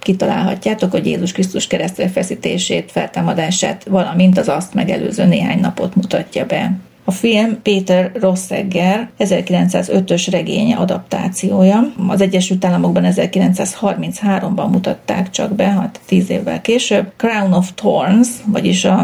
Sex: female